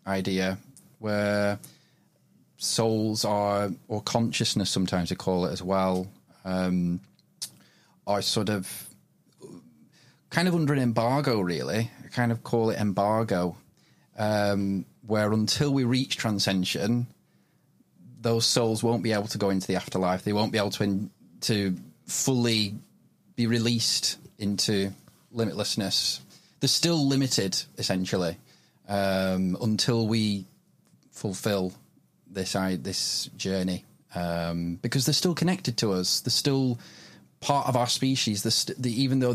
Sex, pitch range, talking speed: male, 95-120 Hz, 130 wpm